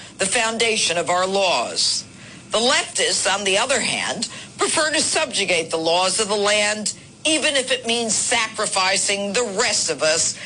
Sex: female